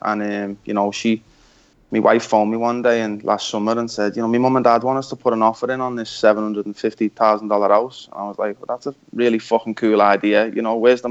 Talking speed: 250 wpm